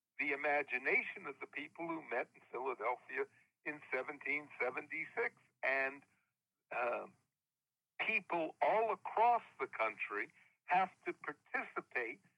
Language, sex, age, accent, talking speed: English, male, 60-79, American, 100 wpm